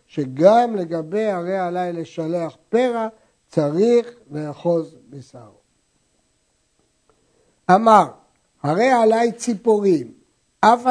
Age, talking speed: 60-79, 75 wpm